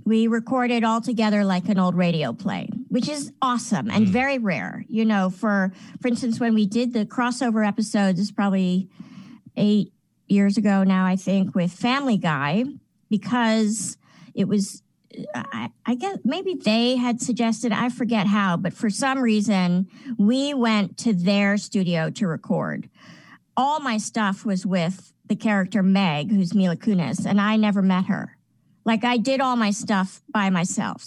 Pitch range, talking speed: 190-230 Hz, 165 wpm